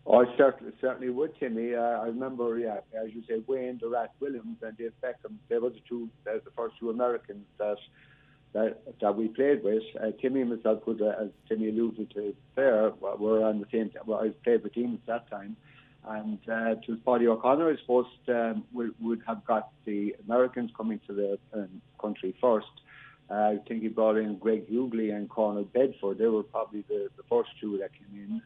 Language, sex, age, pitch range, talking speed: English, male, 50-69, 105-125 Hz, 205 wpm